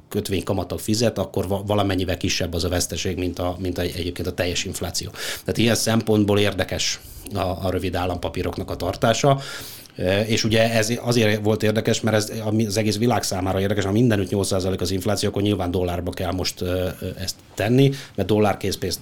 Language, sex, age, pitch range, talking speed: Hungarian, male, 30-49, 95-115 Hz, 165 wpm